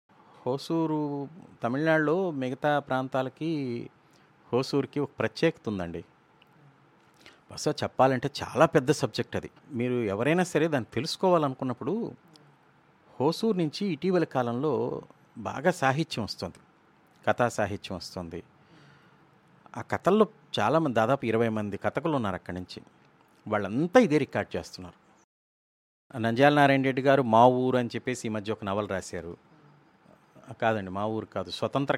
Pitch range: 115-155 Hz